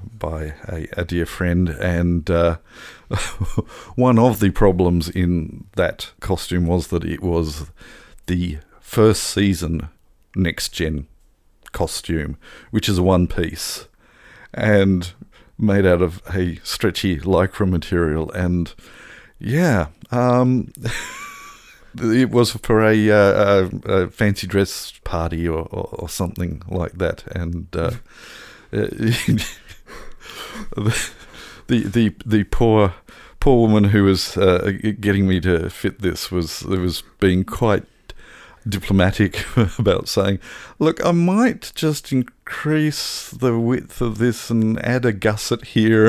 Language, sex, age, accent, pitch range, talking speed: English, male, 50-69, Australian, 85-115 Hz, 120 wpm